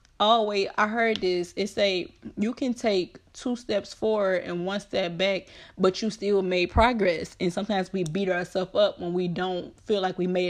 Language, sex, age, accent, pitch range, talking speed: English, female, 20-39, American, 180-215 Hz, 200 wpm